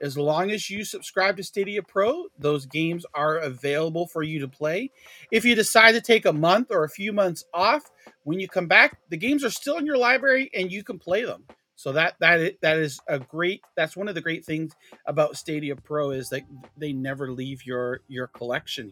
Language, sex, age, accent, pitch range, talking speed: English, male, 30-49, American, 145-195 Hz, 215 wpm